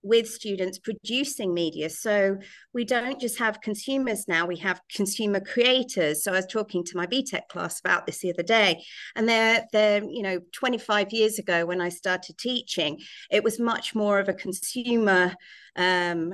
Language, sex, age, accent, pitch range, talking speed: English, female, 40-59, British, 190-230 Hz, 175 wpm